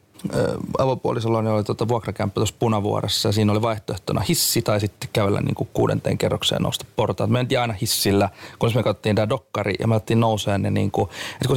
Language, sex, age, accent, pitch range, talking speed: Finnish, male, 30-49, native, 105-130 Hz, 175 wpm